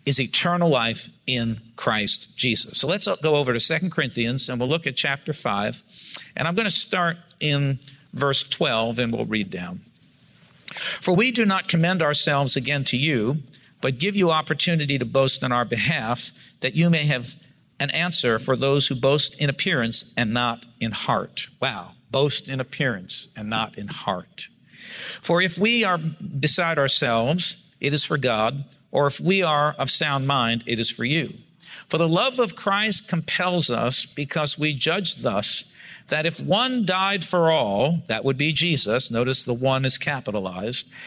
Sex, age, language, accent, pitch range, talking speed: male, 50-69, English, American, 130-170 Hz, 175 wpm